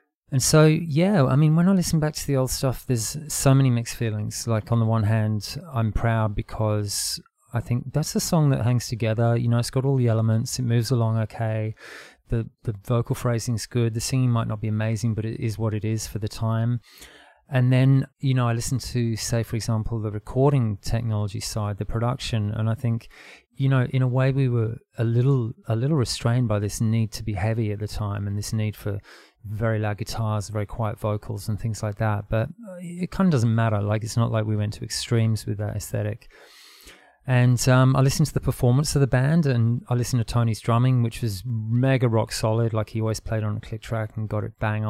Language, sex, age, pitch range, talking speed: English, male, 30-49, 110-125 Hz, 225 wpm